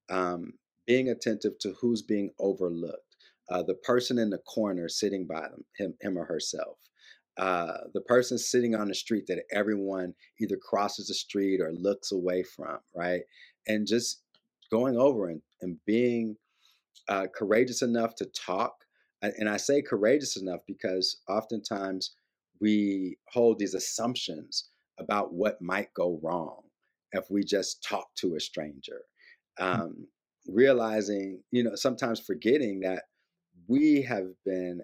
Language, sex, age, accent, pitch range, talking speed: English, male, 40-59, American, 90-115 Hz, 140 wpm